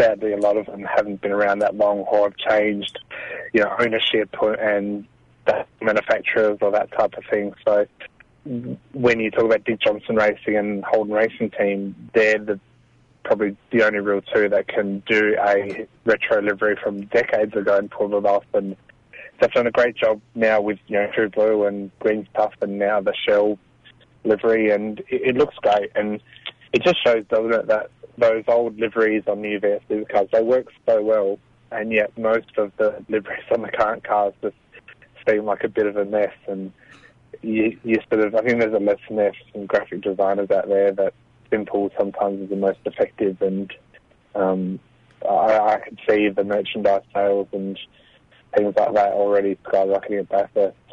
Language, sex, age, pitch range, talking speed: English, male, 20-39, 100-110 Hz, 185 wpm